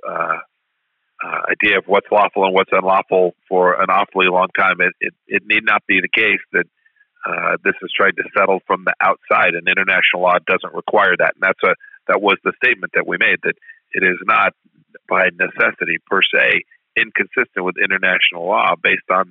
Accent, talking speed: American, 195 wpm